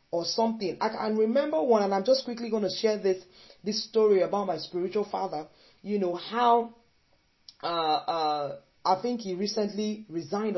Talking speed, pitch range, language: 170 wpm, 160-215 Hz, English